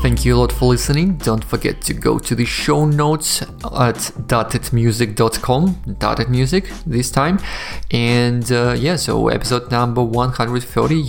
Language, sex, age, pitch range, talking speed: English, male, 20-39, 110-130 Hz, 145 wpm